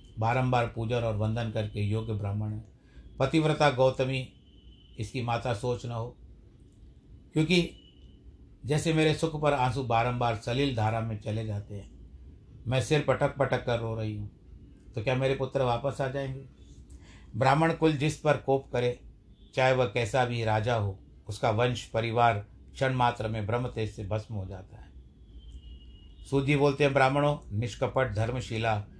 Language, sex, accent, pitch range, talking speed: Hindi, male, native, 105-130 Hz, 150 wpm